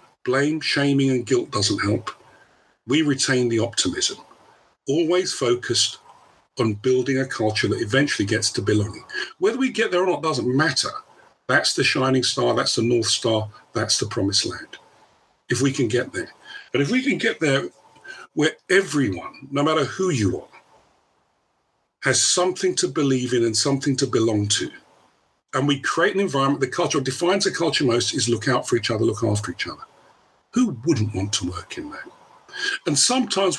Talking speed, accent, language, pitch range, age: 175 wpm, British, English, 125-195 Hz, 40-59